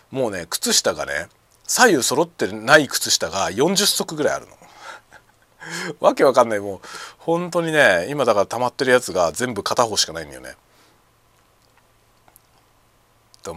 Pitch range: 110-155 Hz